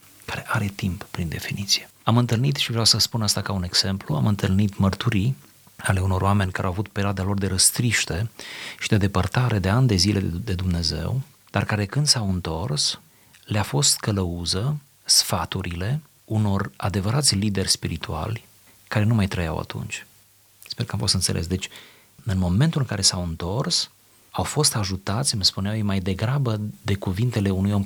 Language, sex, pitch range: Romanian, male, 100-125 Hz